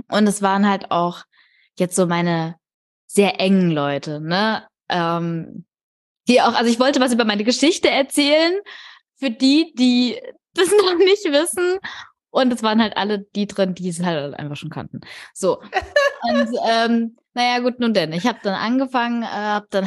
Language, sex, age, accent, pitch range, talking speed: German, female, 20-39, German, 200-265 Hz, 170 wpm